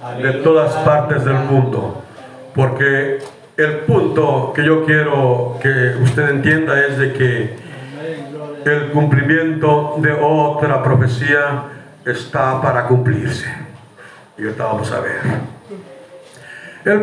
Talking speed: 110 wpm